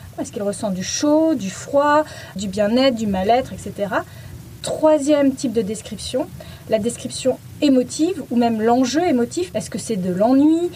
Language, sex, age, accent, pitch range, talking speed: French, female, 20-39, French, 220-290 Hz, 155 wpm